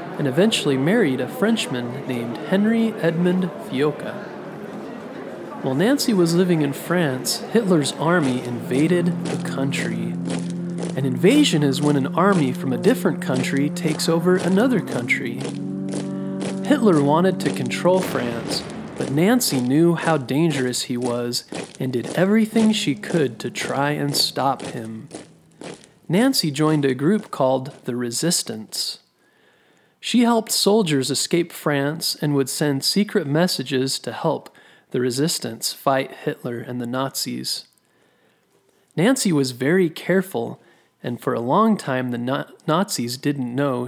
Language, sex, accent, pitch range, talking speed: English, male, American, 125-180 Hz, 130 wpm